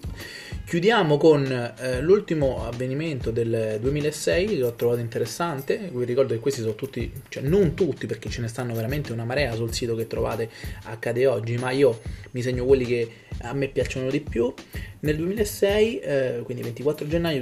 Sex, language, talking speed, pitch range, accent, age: male, Italian, 175 wpm, 115-150 Hz, native, 20-39